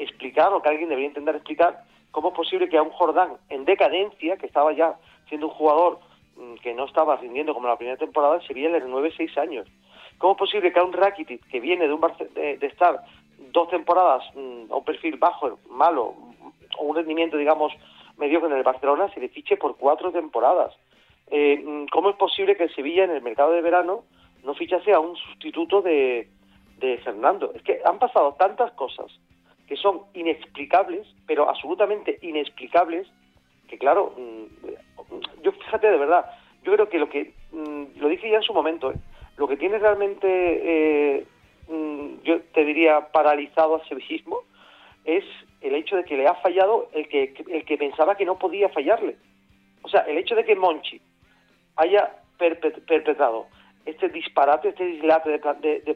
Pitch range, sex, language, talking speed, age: 145-195 Hz, male, Spanish, 180 wpm, 40-59